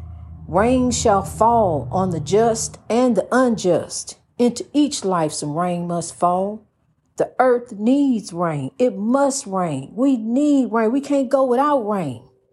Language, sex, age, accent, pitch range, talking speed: English, female, 50-69, American, 180-270 Hz, 150 wpm